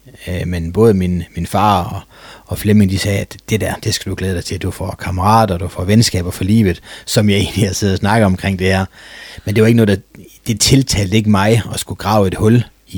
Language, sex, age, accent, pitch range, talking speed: Danish, male, 30-49, native, 95-110 Hz, 250 wpm